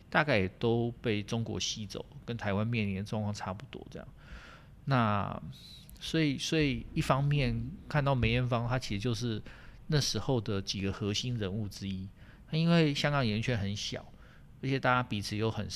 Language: Chinese